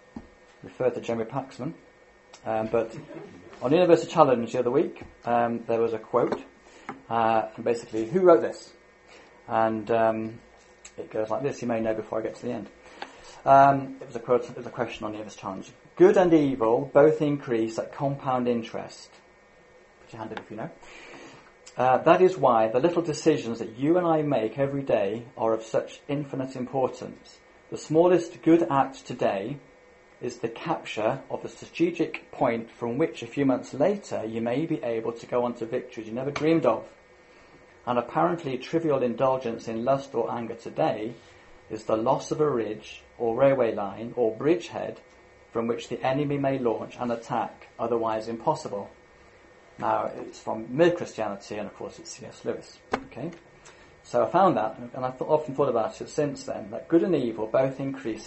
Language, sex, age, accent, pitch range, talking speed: English, male, 30-49, British, 115-150 Hz, 180 wpm